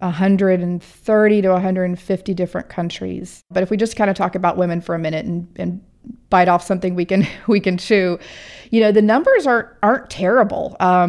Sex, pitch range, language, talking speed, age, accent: female, 175-200 Hz, English, 185 wpm, 40-59, American